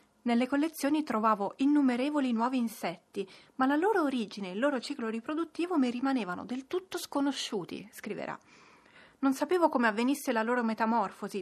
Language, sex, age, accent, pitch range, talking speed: Italian, female, 30-49, native, 215-275 Hz, 145 wpm